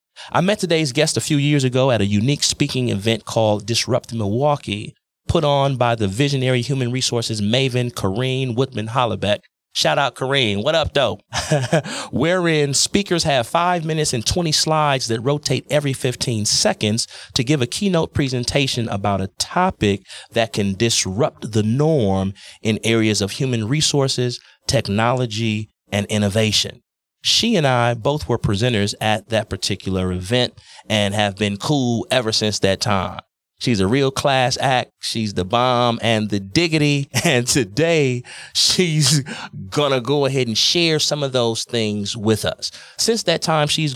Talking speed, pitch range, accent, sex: 155 wpm, 110-145 Hz, American, male